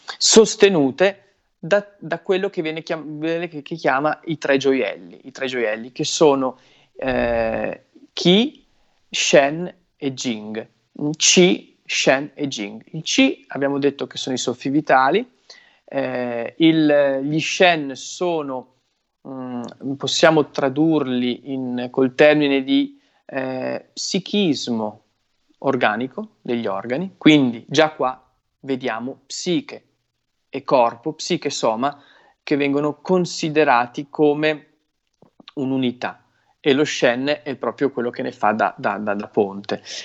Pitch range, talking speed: 125-160 Hz, 120 wpm